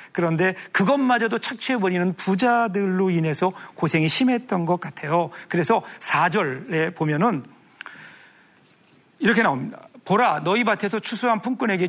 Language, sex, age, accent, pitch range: Korean, male, 40-59, native, 170-235 Hz